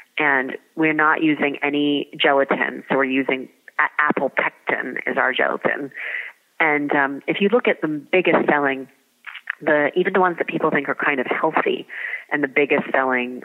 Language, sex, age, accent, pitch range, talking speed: English, female, 30-49, American, 135-155 Hz, 175 wpm